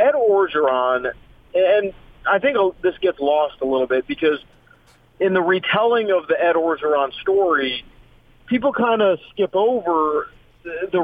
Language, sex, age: English, male, 40-59